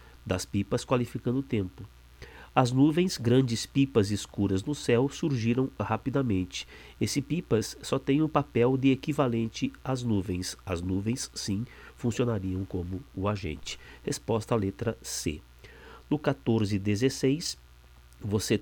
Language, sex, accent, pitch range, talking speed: Portuguese, male, Brazilian, 95-140 Hz, 125 wpm